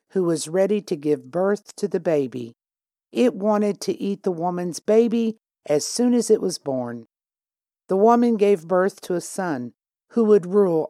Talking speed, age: 175 wpm, 60-79